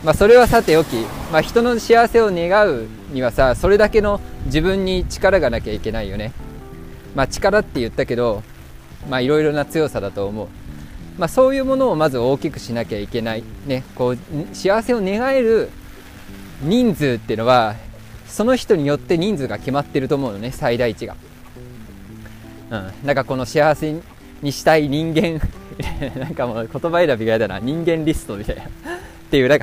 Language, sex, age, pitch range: Japanese, male, 20-39, 110-185 Hz